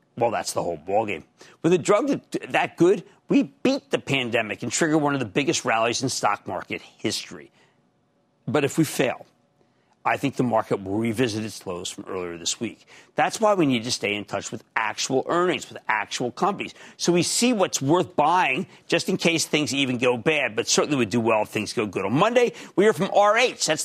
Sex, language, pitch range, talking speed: male, English, 145-210 Hz, 210 wpm